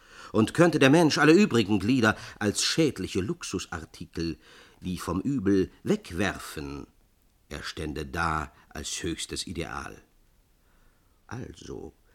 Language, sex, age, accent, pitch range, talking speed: German, male, 50-69, German, 95-150 Hz, 105 wpm